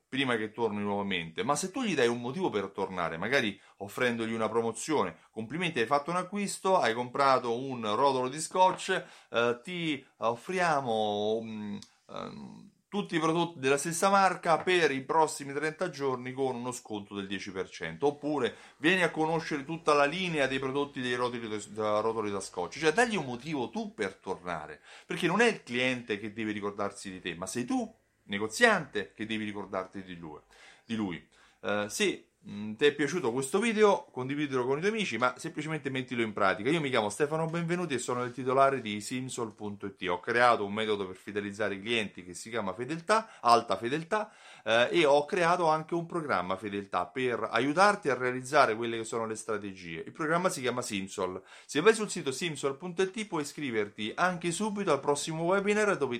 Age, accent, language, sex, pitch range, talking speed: 30-49, native, Italian, male, 110-170 Hz, 175 wpm